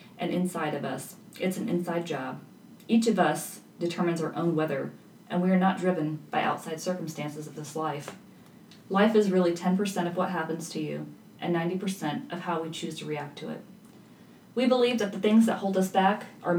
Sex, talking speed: female, 200 wpm